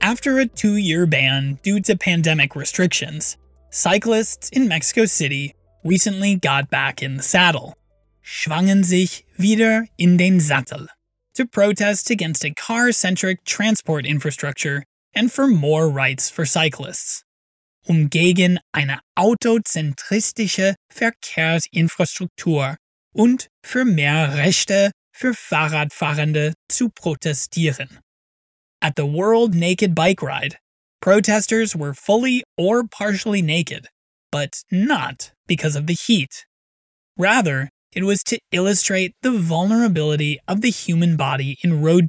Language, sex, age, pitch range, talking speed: English, male, 20-39, 150-205 Hz, 115 wpm